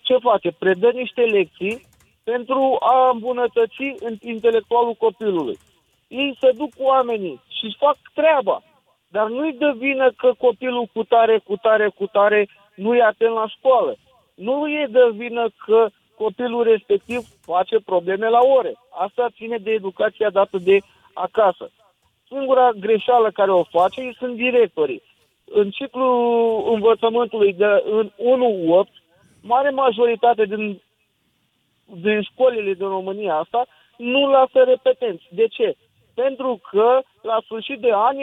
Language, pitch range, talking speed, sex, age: Romanian, 210-255 Hz, 130 wpm, male, 50-69